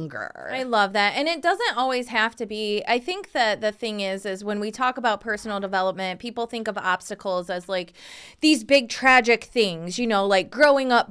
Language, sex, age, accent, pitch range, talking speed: English, female, 20-39, American, 195-265 Hz, 205 wpm